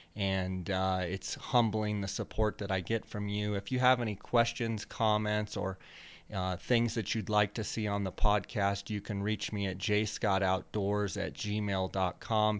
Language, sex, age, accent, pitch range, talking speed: English, male, 30-49, American, 100-115 Hz, 170 wpm